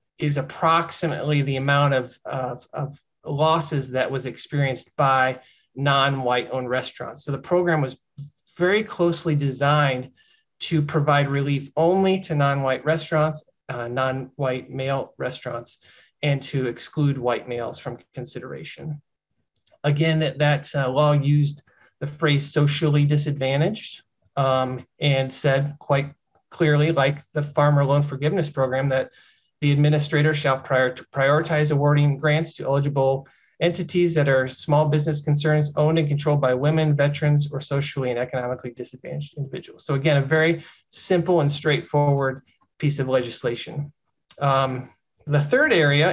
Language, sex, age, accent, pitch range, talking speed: English, male, 30-49, American, 135-155 Hz, 130 wpm